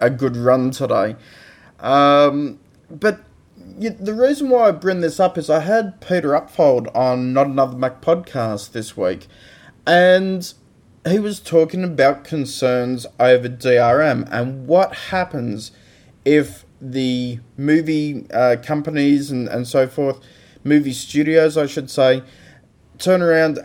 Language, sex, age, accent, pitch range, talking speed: English, male, 20-39, Australian, 115-150 Hz, 130 wpm